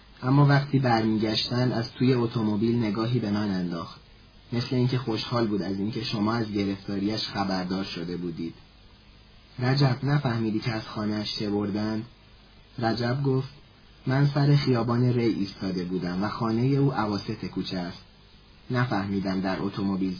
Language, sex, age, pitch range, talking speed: English, male, 30-49, 100-125 Hz, 135 wpm